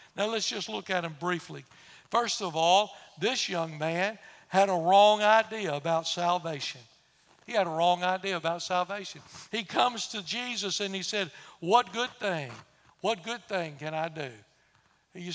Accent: American